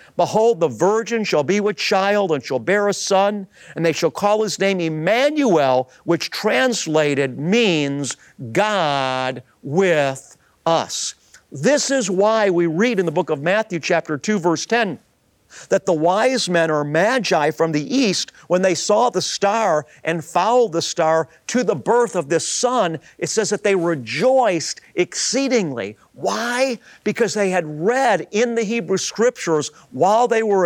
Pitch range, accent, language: 165-220 Hz, American, English